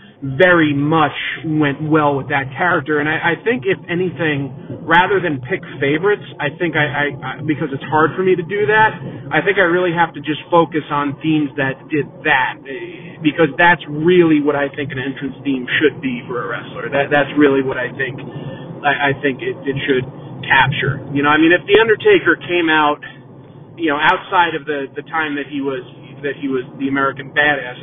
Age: 30-49